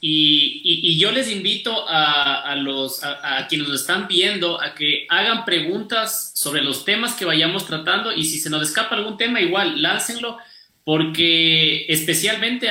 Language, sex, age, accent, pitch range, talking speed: Spanish, male, 30-49, Mexican, 150-215 Hz, 170 wpm